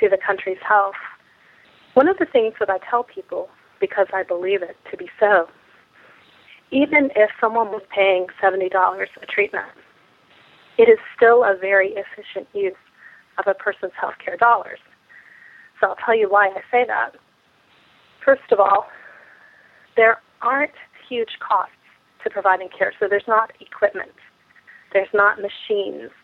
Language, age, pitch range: English, 30-49, 195-270 Hz